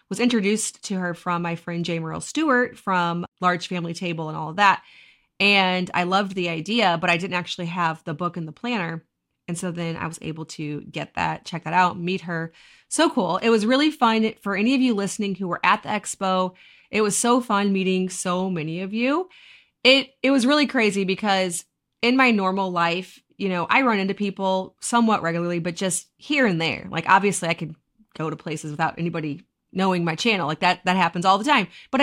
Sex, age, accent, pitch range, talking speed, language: female, 30-49, American, 175-225 Hz, 215 wpm, English